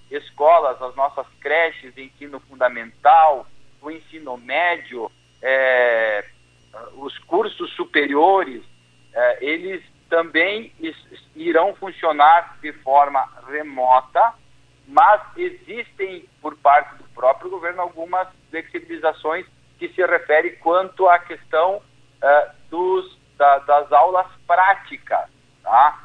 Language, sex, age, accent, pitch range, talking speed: Portuguese, male, 50-69, Brazilian, 140-180 Hz, 100 wpm